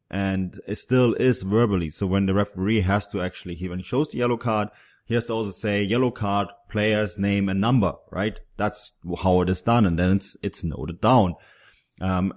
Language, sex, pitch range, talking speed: English, male, 90-110 Hz, 210 wpm